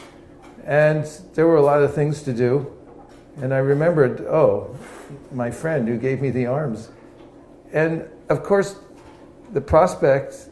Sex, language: male, English